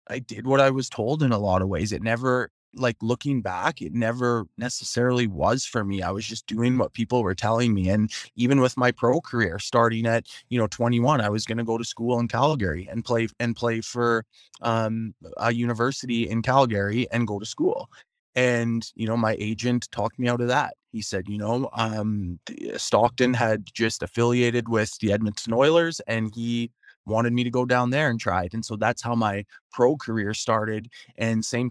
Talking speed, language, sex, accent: 205 wpm, English, male, American